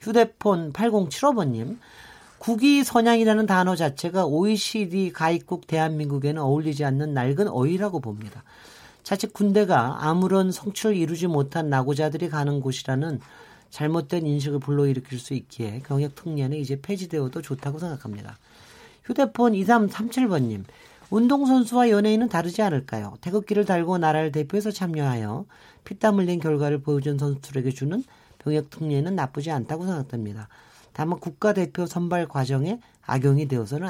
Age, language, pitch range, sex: 40-59, Korean, 140-200 Hz, male